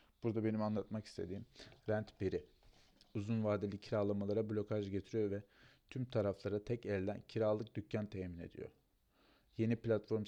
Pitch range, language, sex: 105-125 Hz, Turkish, male